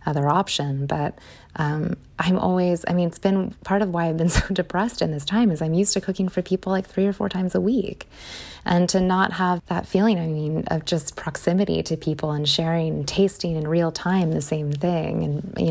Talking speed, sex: 220 wpm, female